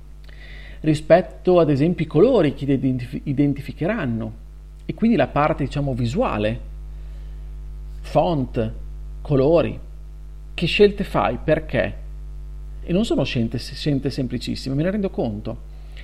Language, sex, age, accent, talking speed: Italian, male, 40-59, native, 115 wpm